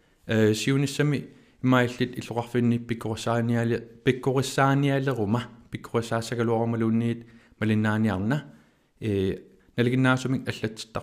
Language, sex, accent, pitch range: Danish, male, native, 110-125 Hz